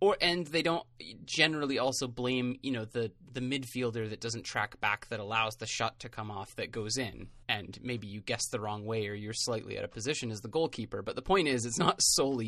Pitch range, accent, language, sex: 110-125 Hz, American, English, male